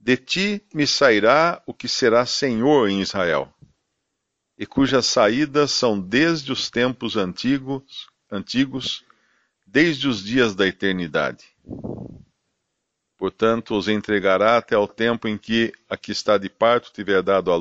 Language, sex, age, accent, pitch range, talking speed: Portuguese, male, 50-69, Brazilian, 100-130 Hz, 135 wpm